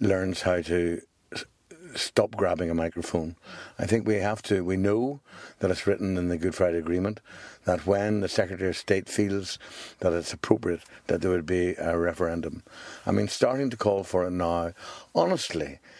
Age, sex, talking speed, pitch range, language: 60-79, male, 175 wpm, 90-110 Hz, English